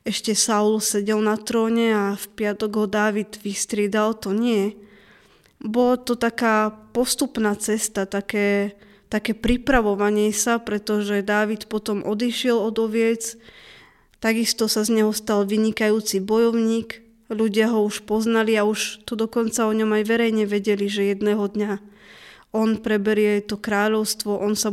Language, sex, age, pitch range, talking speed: Slovak, female, 20-39, 210-230 Hz, 140 wpm